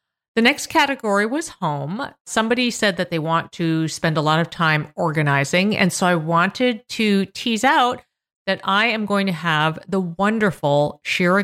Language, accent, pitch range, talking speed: English, American, 165-220 Hz, 175 wpm